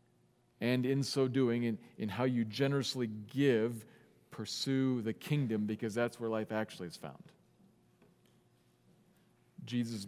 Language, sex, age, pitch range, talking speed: English, male, 40-59, 110-135 Hz, 130 wpm